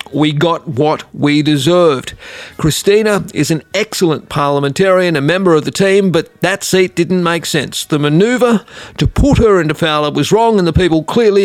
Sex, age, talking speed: male, 40-59, 180 wpm